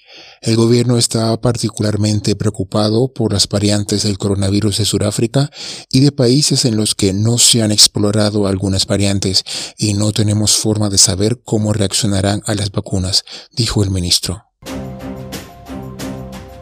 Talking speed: 135 wpm